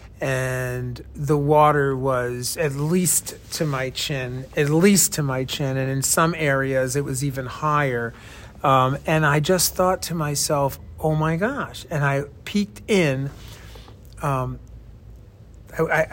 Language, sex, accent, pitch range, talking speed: English, male, American, 125-160 Hz, 140 wpm